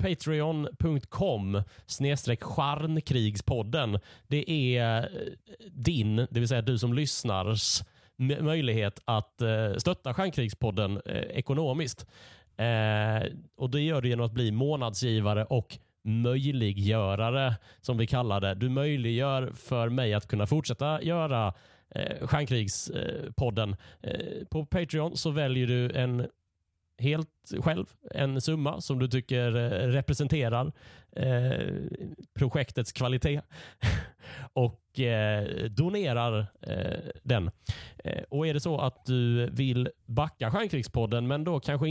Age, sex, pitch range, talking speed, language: 30-49, male, 115-145 Hz, 100 wpm, Swedish